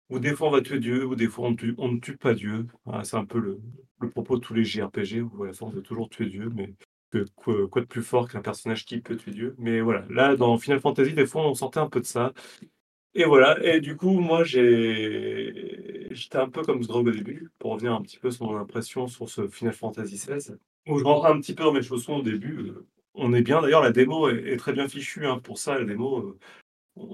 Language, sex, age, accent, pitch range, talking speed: French, male, 30-49, French, 115-145 Hz, 255 wpm